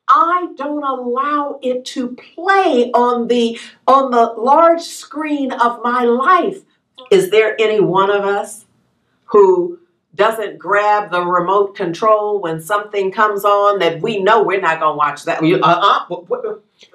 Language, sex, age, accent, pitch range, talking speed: English, female, 50-69, American, 200-290 Hz, 145 wpm